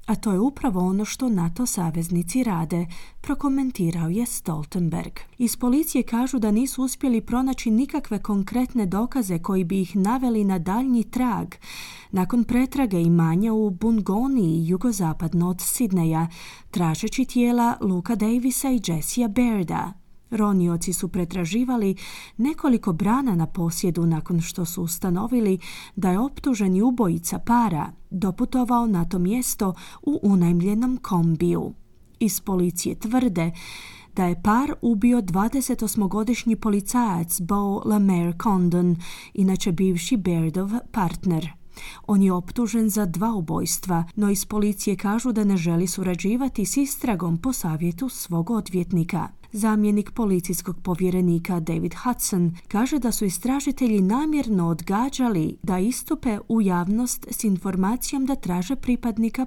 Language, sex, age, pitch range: Croatian, female, 30-49, 170-235 Hz